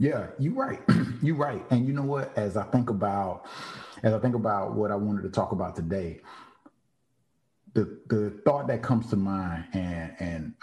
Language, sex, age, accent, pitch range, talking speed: English, male, 30-49, American, 95-120 Hz, 185 wpm